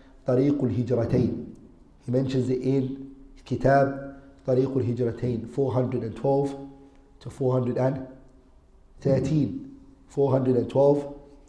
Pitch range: 115-135 Hz